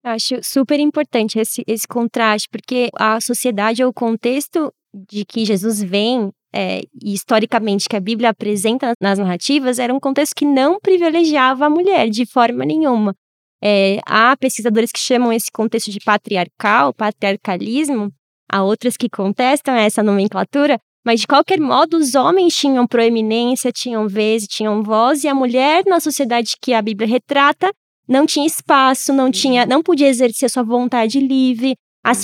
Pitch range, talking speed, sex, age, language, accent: 225-290 Hz, 155 wpm, female, 20-39, Portuguese, Brazilian